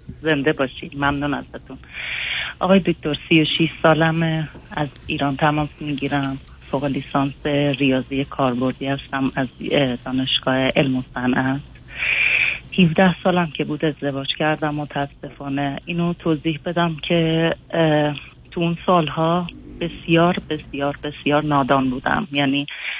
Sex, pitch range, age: female, 140-160 Hz, 30-49